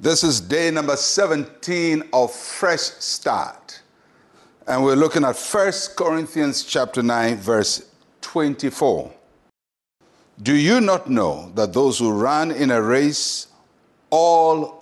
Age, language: 60-79, English